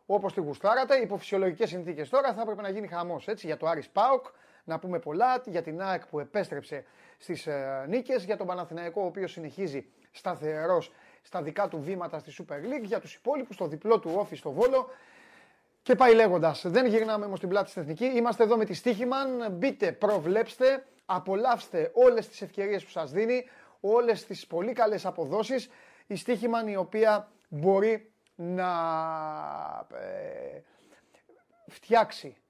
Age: 30-49